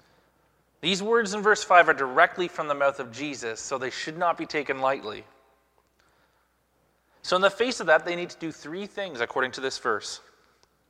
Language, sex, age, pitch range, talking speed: English, male, 30-49, 150-205 Hz, 195 wpm